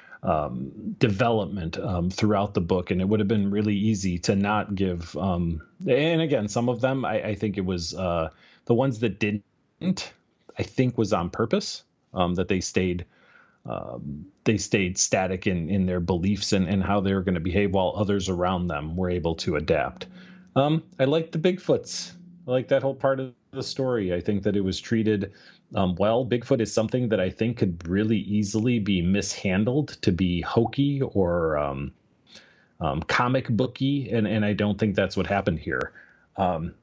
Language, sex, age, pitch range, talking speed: English, male, 30-49, 95-115 Hz, 185 wpm